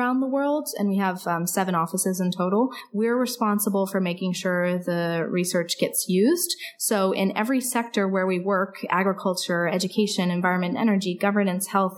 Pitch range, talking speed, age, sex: 180-220 Hz, 160 wpm, 20-39, female